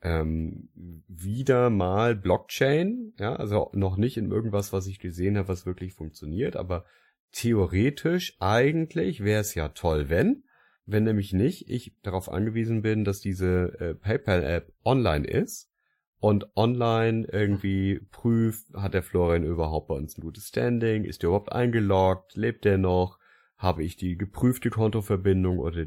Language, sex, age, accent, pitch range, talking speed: German, male, 30-49, German, 90-110 Hz, 145 wpm